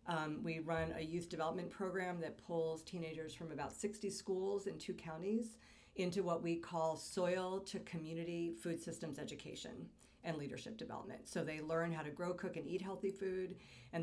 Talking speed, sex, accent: 180 wpm, female, American